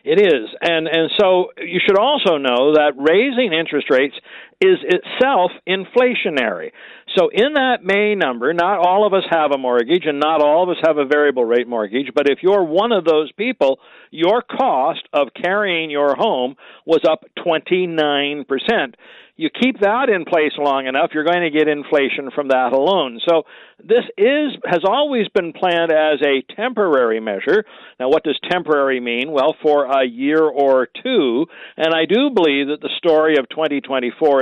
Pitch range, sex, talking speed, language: 145-210 Hz, male, 175 wpm, English